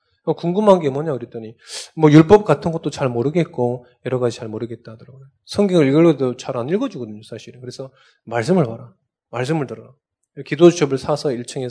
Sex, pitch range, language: male, 125-180 Hz, Korean